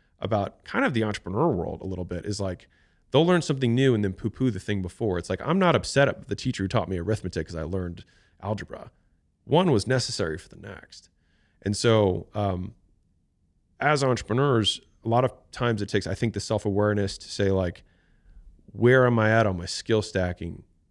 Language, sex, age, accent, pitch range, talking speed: English, male, 30-49, American, 90-115 Hz, 200 wpm